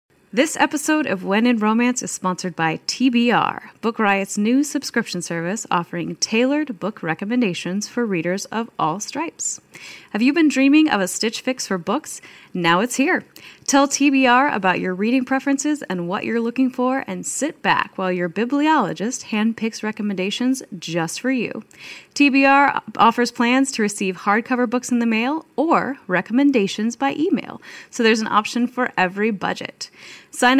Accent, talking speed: American, 160 wpm